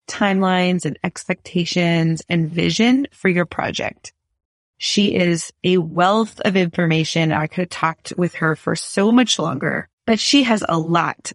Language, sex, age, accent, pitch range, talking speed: English, female, 30-49, American, 165-210 Hz, 155 wpm